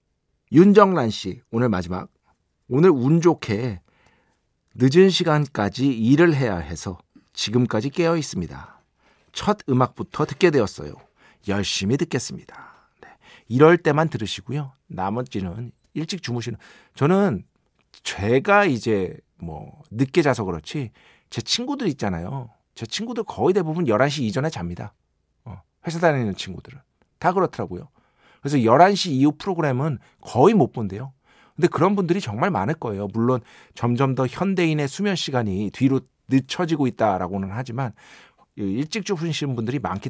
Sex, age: male, 40-59